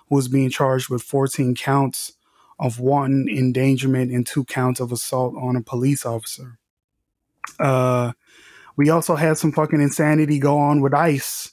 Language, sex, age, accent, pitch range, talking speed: English, male, 20-39, American, 130-150 Hz, 150 wpm